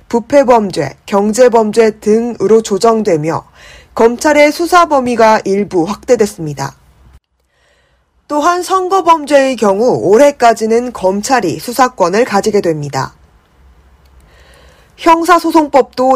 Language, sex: Korean, female